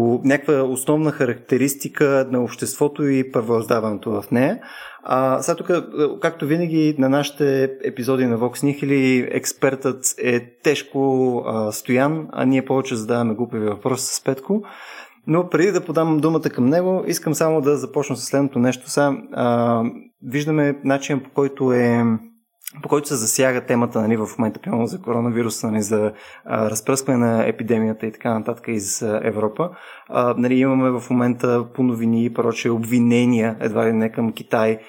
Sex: male